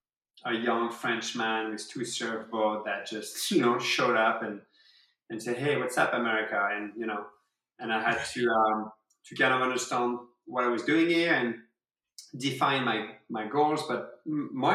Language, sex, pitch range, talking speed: English, male, 110-135 Hz, 180 wpm